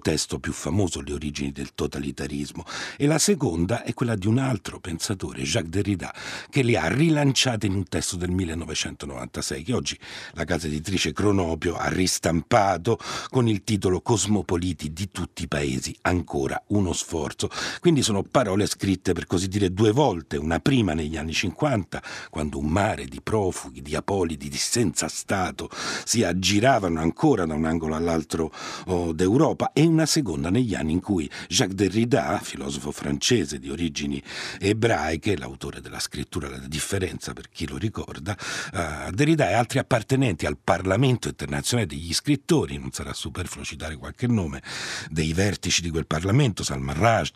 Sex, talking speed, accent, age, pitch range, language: male, 155 wpm, native, 60-79, 75-110 Hz, Italian